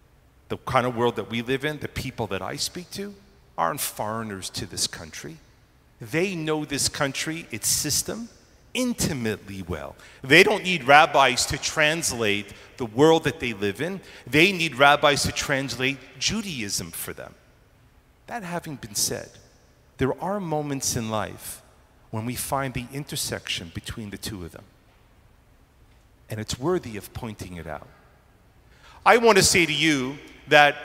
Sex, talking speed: male, 155 wpm